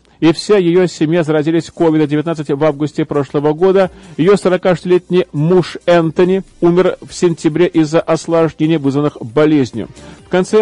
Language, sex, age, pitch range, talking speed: Russian, male, 40-59, 150-180 Hz, 135 wpm